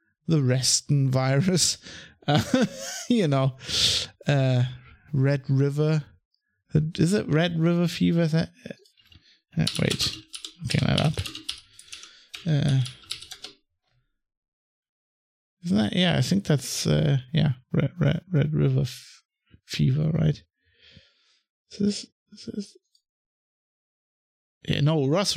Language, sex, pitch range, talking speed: English, male, 130-160 Hz, 100 wpm